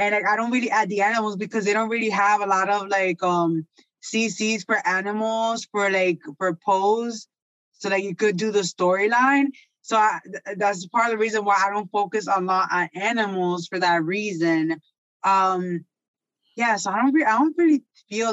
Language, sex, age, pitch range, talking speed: English, female, 20-39, 190-225 Hz, 195 wpm